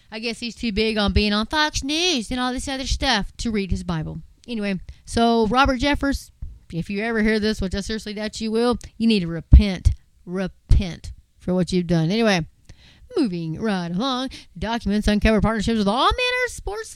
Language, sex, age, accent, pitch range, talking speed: English, female, 30-49, American, 195-270 Hz, 195 wpm